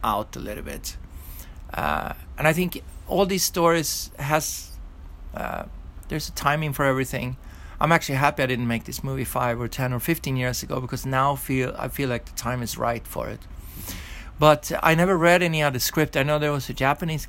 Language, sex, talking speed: English, male, 200 wpm